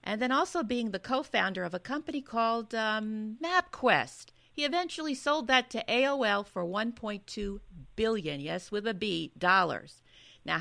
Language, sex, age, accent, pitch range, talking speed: English, female, 50-69, American, 175-245 Hz, 155 wpm